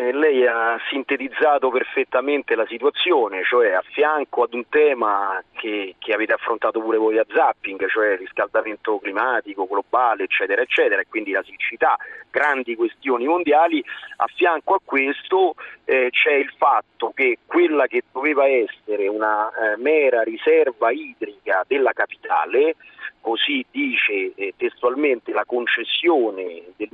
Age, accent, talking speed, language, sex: 40-59, native, 130 wpm, Italian, male